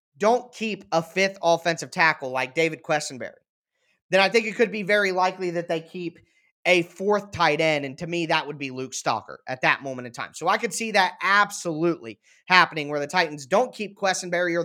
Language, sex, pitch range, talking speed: English, male, 145-185 Hz, 210 wpm